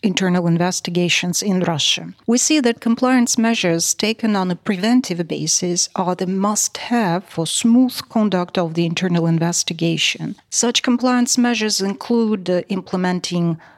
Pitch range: 170-215 Hz